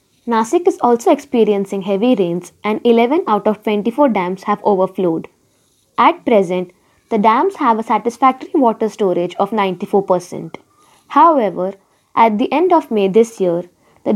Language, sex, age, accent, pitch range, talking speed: Marathi, female, 20-39, native, 205-250 Hz, 145 wpm